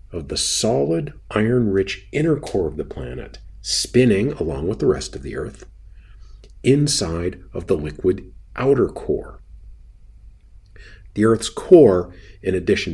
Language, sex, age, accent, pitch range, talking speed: English, male, 50-69, American, 85-105 Hz, 130 wpm